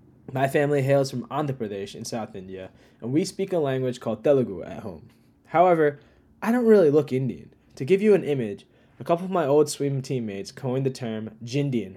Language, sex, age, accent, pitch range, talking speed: English, male, 10-29, American, 115-150 Hz, 200 wpm